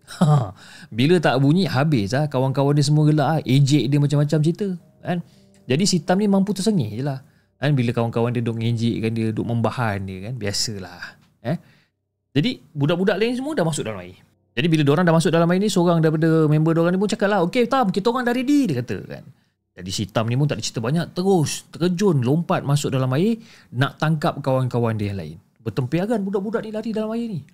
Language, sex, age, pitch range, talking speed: Malay, male, 30-49, 125-180 Hz, 210 wpm